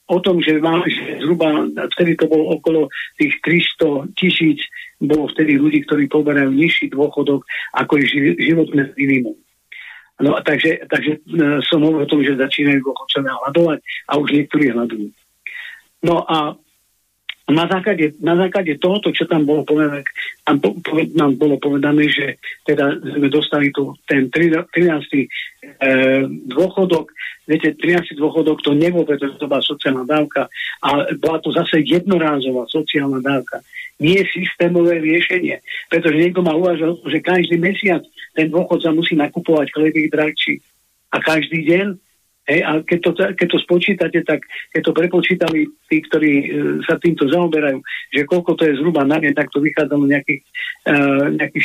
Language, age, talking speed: Slovak, 50-69, 150 wpm